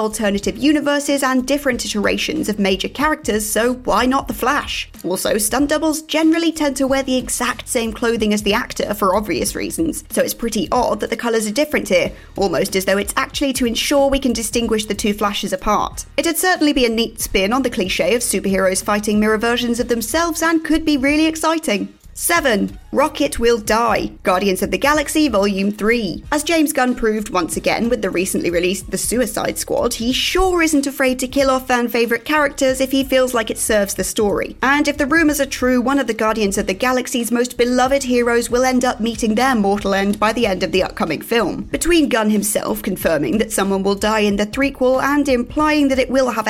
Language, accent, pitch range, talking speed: English, British, 215-275 Hz, 210 wpm